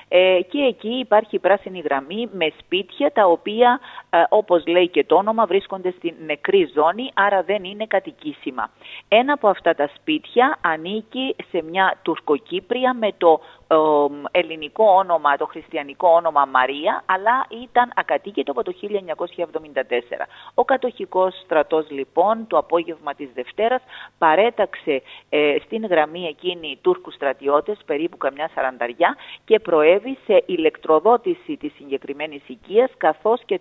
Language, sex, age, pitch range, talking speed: Greek, female, 40-59, 155-230 Hz, 130 wpm